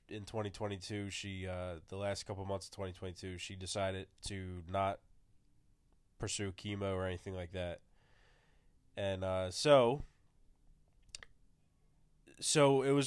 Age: 20-39